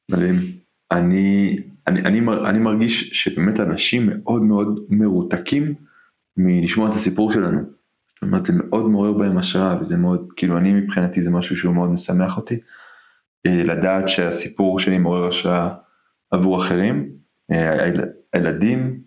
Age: 20-39